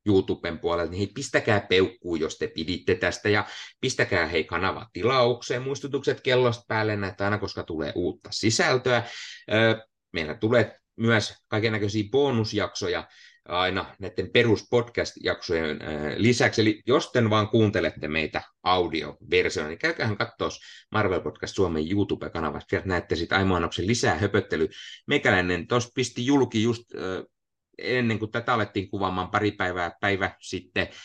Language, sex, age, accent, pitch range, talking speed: Finnish, male, 30-49, native, 90-120 Hz, 125 wpm